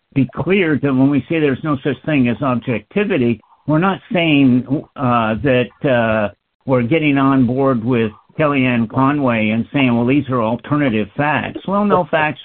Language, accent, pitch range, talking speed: English, American, 120-145 Hz, 170 wpm